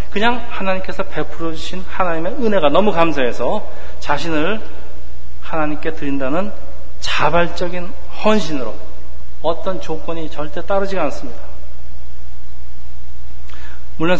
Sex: male